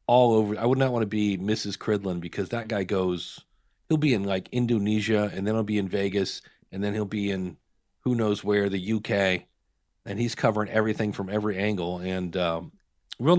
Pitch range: 100-130 Hz